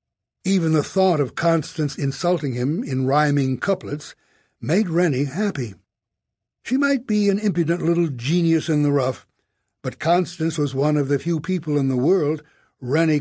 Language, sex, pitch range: English, male, 135-175 Hz